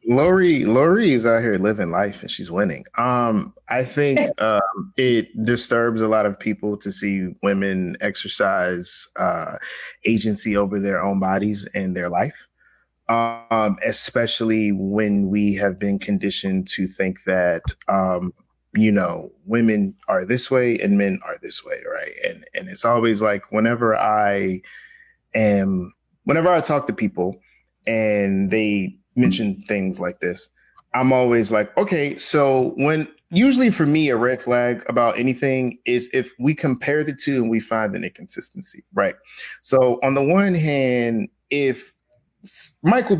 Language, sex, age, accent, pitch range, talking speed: English, male, 20-39, American, 100-130 Hz, 150 wpm